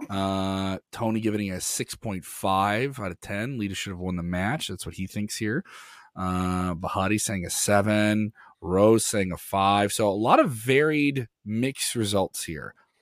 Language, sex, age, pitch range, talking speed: English, male, 30-49, 100-125 Hz, 165 wpm